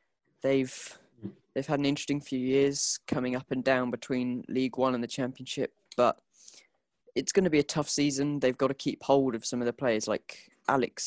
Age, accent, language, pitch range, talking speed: 20-39, British, English, 130-145 Hz, 200 wpm